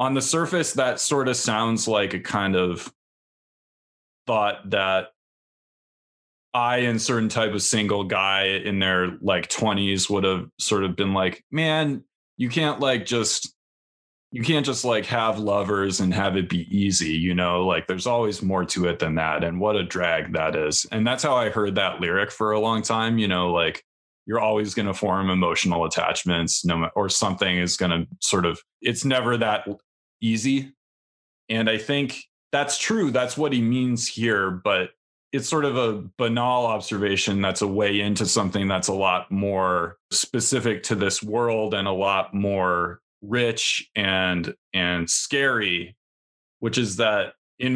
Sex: male